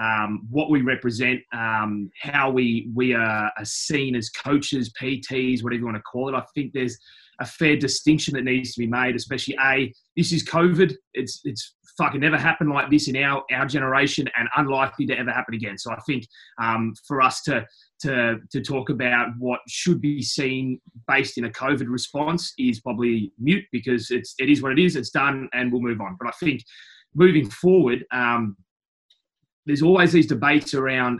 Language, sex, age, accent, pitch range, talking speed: English, male, 20-39, Australian, 125-155 Hz, 190 wpm